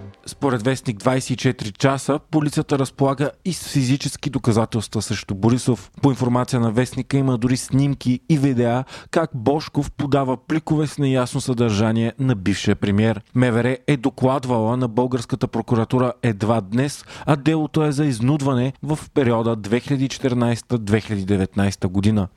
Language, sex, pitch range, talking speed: Bulgarian, male, 115-140 Hz, 130 wpm